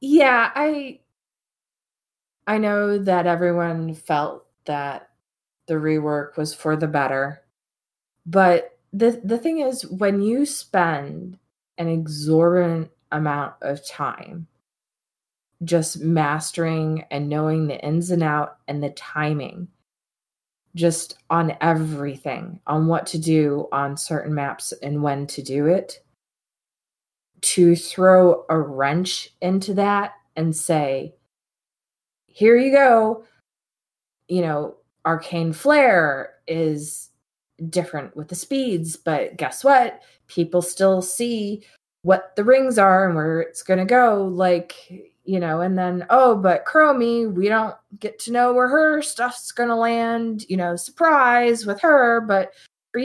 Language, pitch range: English, 155-225 Hz